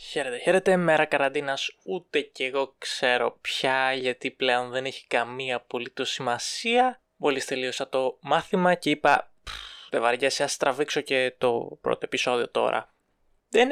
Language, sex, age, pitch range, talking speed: Greek, male, 20-39, 135-155 Hz, 145 wpm